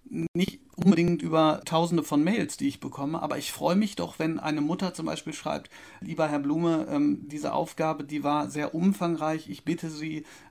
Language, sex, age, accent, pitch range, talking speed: German, male, 40-59, German, 145-175 Hz, 185 wpm